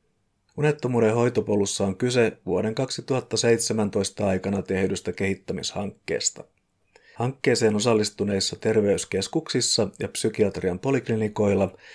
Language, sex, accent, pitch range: Finnish, male, native, 95-115 Hz